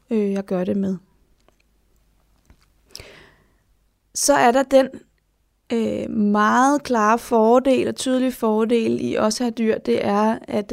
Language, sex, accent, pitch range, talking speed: Danish, female, native, 210-255 Hz, 130 wpm